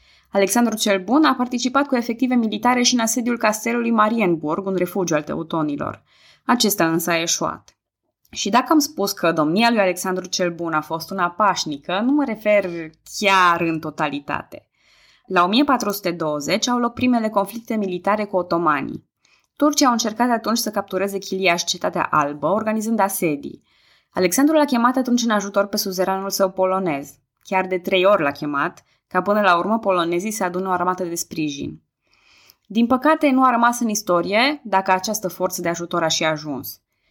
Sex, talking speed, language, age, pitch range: female, 170 wpm, Romanian, 20-39, 170-230 Hz